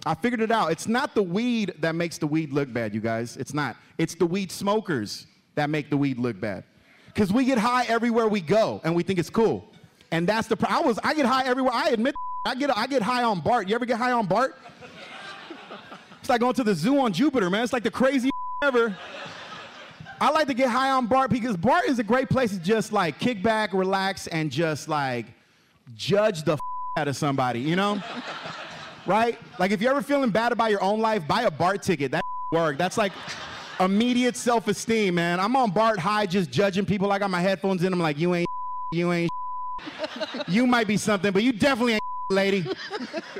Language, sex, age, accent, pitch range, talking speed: English, male, 30-49, American, 175-245 Hz, 215 wpm